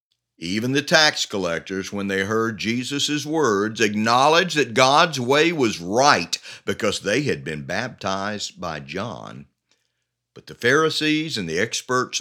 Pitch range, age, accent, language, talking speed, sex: 80-120 Hz, 50-69, American, English, 140 wpm, male